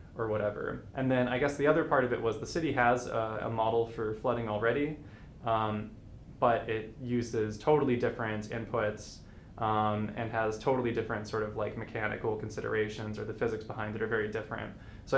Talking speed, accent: 185 wpm, American